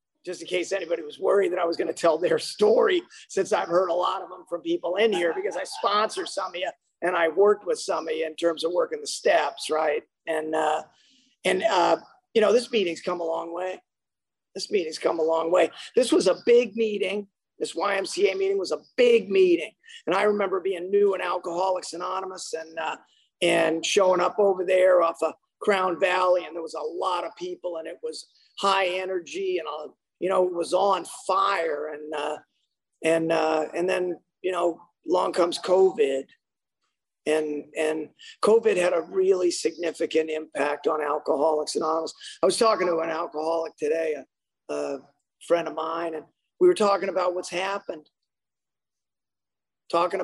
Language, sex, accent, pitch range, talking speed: English, male, American, 165-220 Hz, 185 wpm